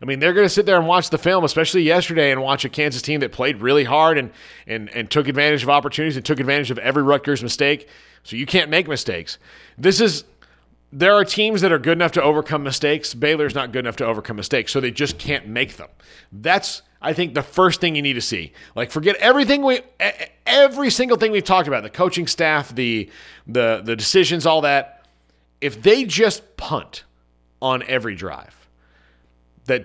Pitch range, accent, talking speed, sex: 115-175 Hz, American, 210 wpm, male